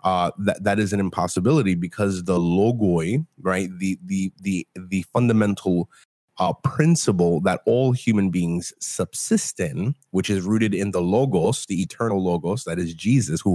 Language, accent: English, American